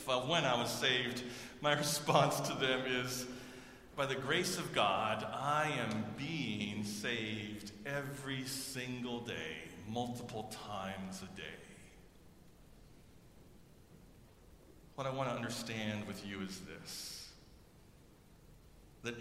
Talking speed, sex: 110 wpm, male